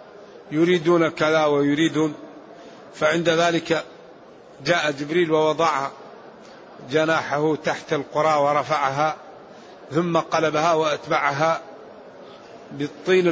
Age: 50-69